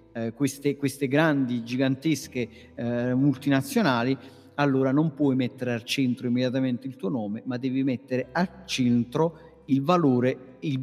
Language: Italian